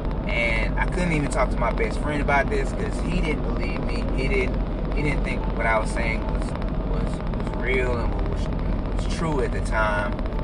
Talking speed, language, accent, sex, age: 215 wpm, English, American, male, 20-39